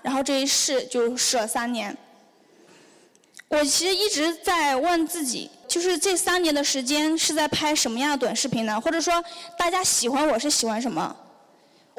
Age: 10-29